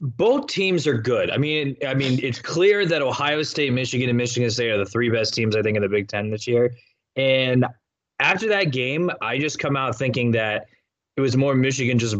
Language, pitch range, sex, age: English, 115-145 Hz, male, 20-39